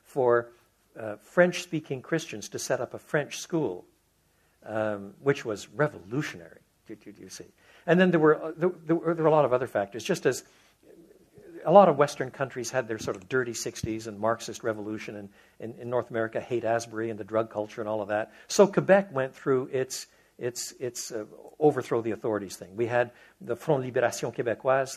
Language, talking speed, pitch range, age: English, 195 wpm, 110-135 Hz, 60-79